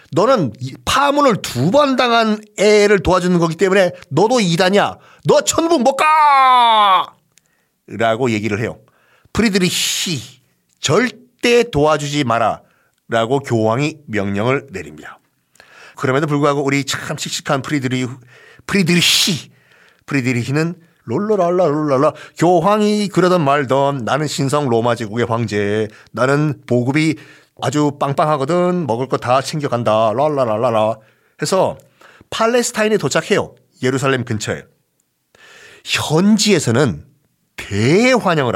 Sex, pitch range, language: male, 130-195 Hz, Korean